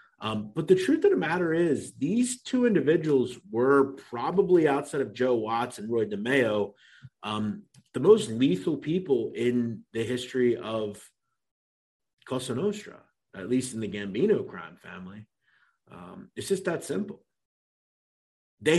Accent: American